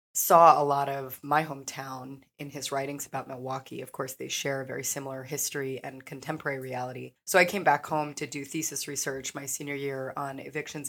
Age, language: 30-49, English